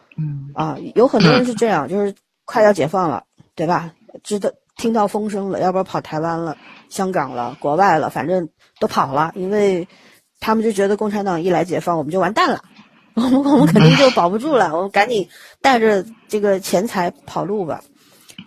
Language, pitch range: Chinese, 170-225 Hz